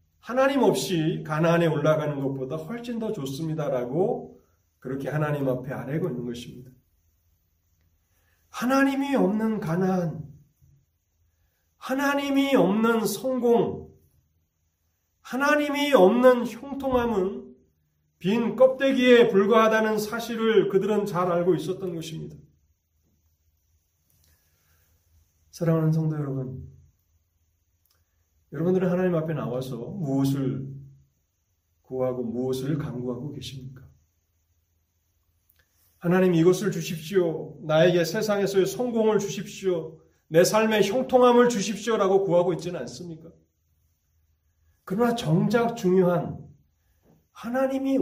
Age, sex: 40-59, male